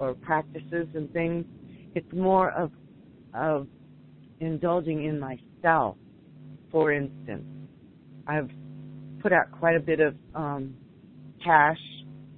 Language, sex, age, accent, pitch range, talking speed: English, female, 50-69, American, 145-170 Hz, 105 wpm